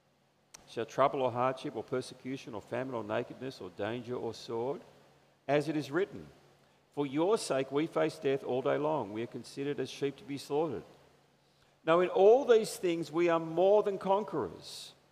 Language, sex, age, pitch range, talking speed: English, male, 50-69, 135-195 Hz, 180 wpm